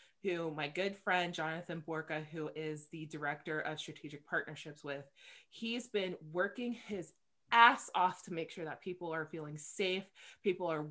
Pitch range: 155-195 Hz